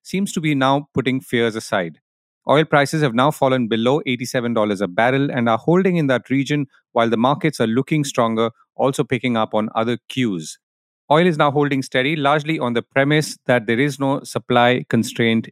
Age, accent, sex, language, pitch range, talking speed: 40-59, Indian, male, English, 115-145 Hz, 190 wpm